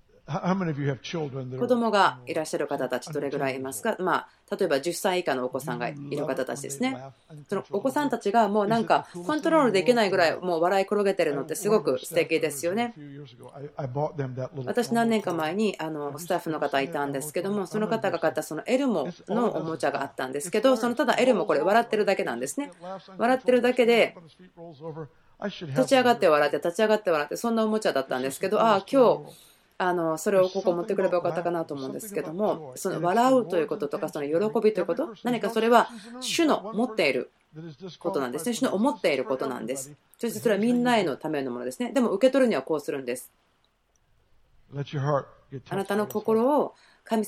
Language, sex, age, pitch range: Japanese, female, 30-49, 145-225 Hz